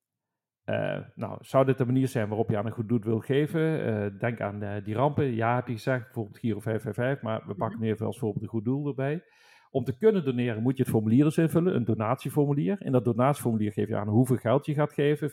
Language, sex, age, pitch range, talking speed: Dutch, male, 40-59, 115-145 Hz, 235 wpm